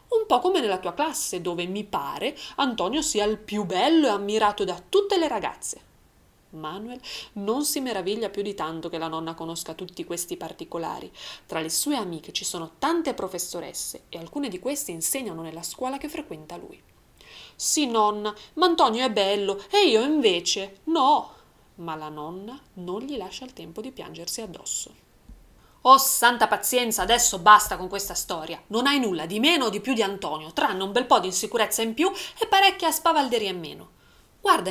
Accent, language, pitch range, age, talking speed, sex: native, Italian, 185-300 Hz, 20-39, 180 wpm, female